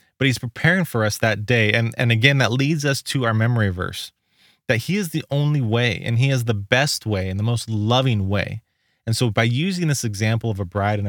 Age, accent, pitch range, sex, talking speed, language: 20-39, American, 105-135 Hz, male, 240 wpm, English